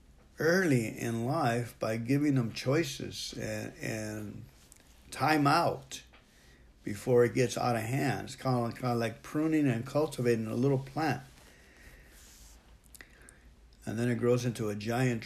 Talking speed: 140 wpm